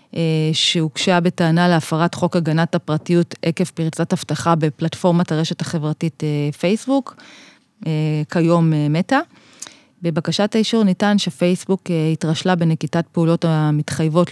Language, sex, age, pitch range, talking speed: Hebrew, female, 20-39, 155-195 Hz, 95 wpm